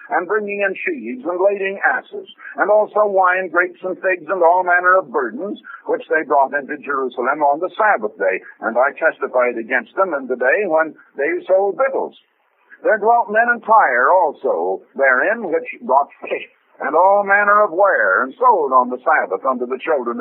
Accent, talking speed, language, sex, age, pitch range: American, 185 wpm, English, male, 60-79, 170-270 Hz